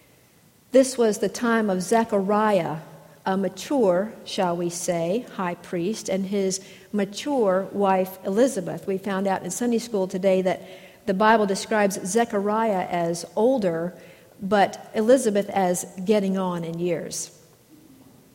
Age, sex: 50-69, female